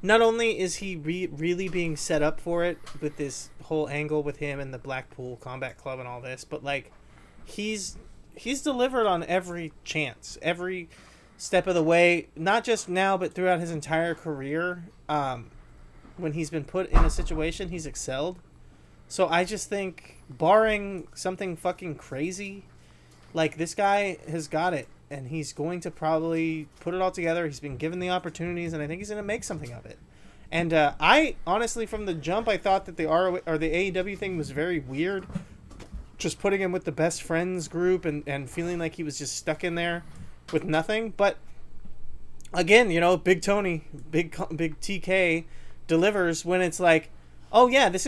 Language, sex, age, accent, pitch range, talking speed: English, male, 30-49, American, 150-185 Hz, 185 wpm